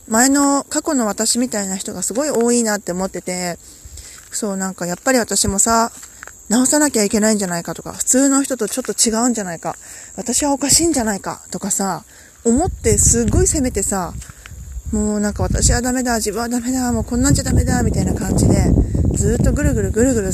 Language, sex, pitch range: Japanese, female, 205-280 Hz